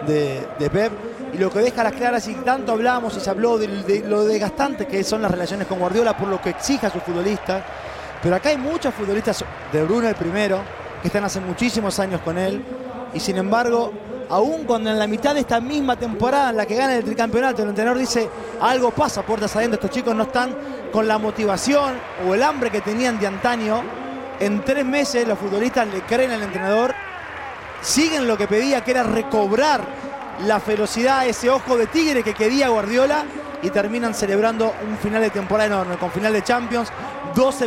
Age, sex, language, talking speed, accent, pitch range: 20-39, male, Spanish, 200 wpm, Argentinian, 205-250 Hz